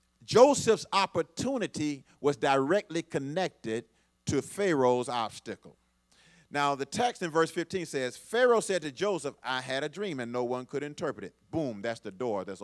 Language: English